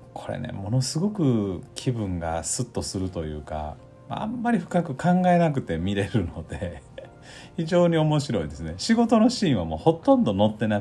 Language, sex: Japanese, male